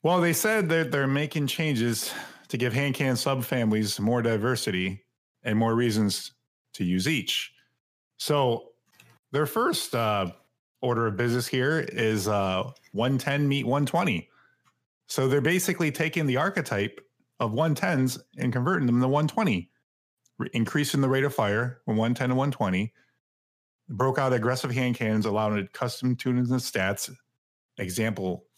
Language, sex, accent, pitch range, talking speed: English, male, American, 100-130 Hz, 135 wpm